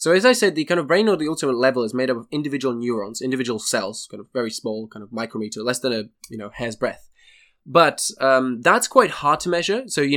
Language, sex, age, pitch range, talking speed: Slovak, male, 10-29, 120-145 Hz, 255 wpm